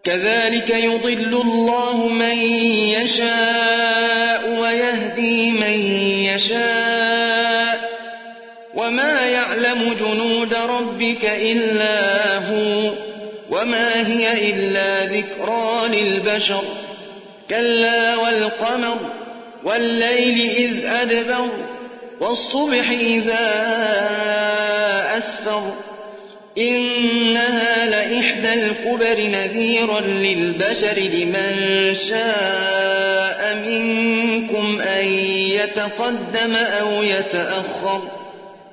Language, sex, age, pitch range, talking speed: Arabic, male, 30-49, 210-230 Hz, 60 wpm